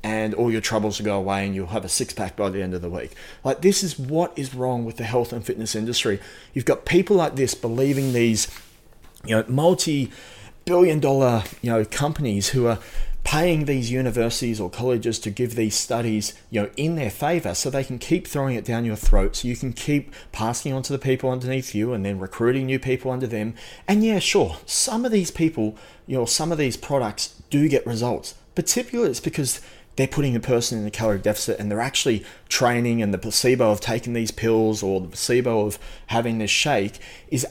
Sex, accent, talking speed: male, Australian, 215 wpm